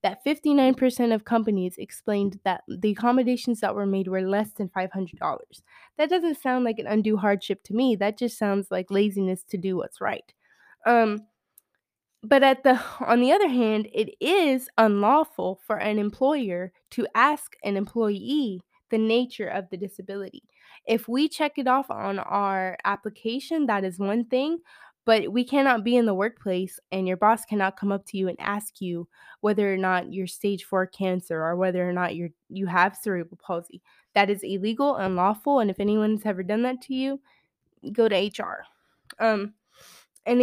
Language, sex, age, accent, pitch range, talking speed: English, female, 20-39, American, 195-245 Hz, 180 wpm